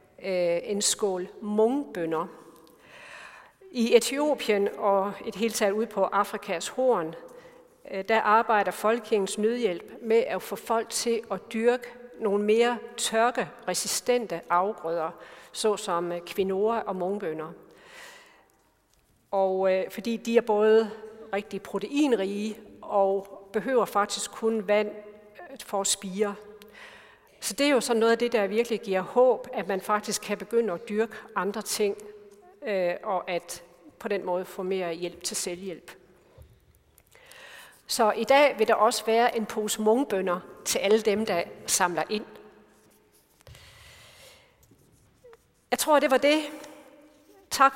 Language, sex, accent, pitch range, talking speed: Danish, female, native, 195-235 Hz, 125 wpm